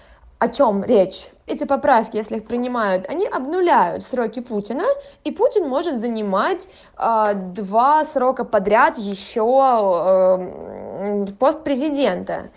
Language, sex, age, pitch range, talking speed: Russian, female, 20-39, 215-275 Hz, 115 wpm